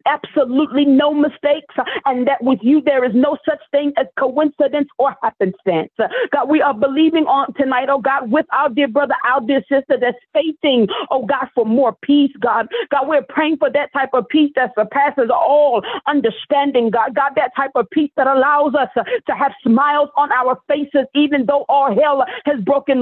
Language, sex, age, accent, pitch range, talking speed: English, female, 40-59, American, 265-300 Hz, 190 wpm